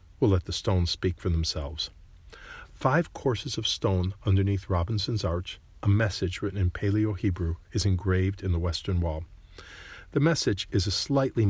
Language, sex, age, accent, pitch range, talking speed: English, male, 50-69, American, 90-105 Hz, 155 wpm